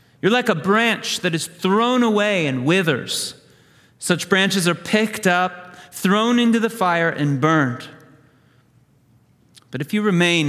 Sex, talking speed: male, 145 wpm